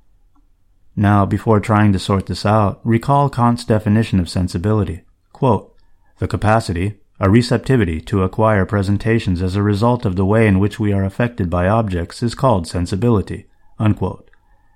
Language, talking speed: English, 150 wpm